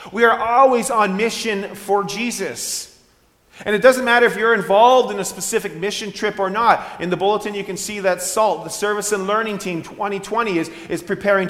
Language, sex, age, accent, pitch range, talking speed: English, male, 30-49, American, 175-215 Hz, 200 wpm